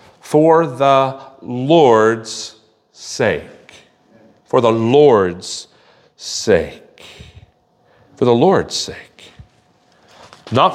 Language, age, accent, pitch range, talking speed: English, 40-59, American, 110-165 Hz, 75 wpm